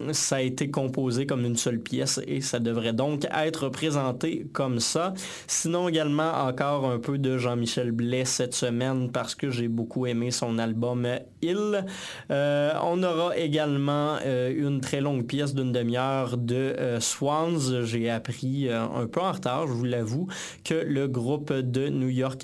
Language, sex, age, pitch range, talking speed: French, male, 20-39, 120-140 Hz, 170 wpm